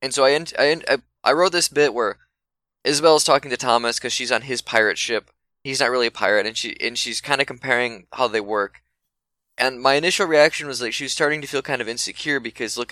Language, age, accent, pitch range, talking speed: English, 10-29, American, 115-155 Hz, 235 wpm